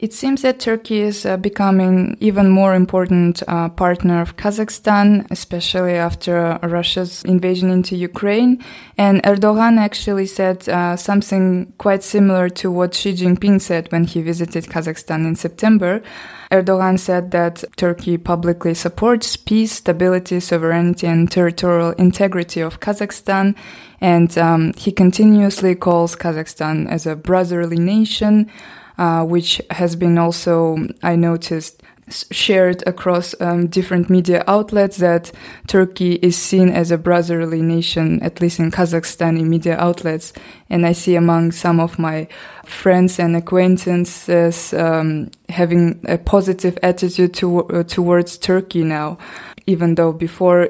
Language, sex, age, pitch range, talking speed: English, female, 20-39, 170-195 Hz, 135 wpm